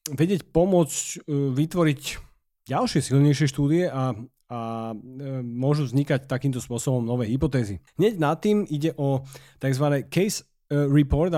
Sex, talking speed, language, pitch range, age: male, 115 wpm, Slovak, 125-160 Hz, 30-49